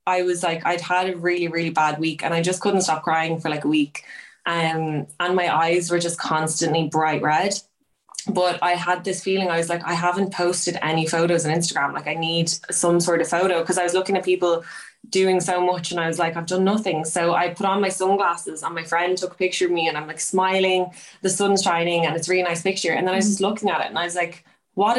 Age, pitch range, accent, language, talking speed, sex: 20-39, 160-185 Hz, Irish, English, 255 wpm, female